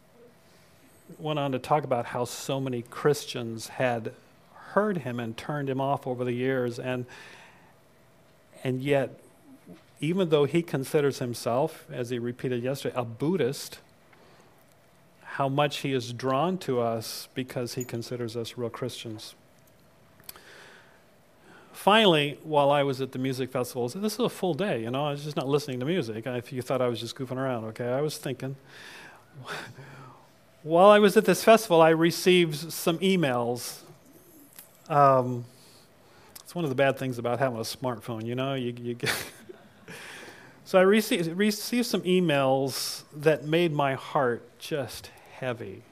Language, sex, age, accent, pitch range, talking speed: English, male, 40-59, American, 125-160 Hz, 155 wpm